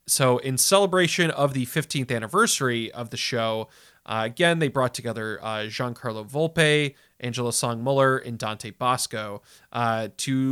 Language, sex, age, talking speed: English, male, 30-49, 150 wpm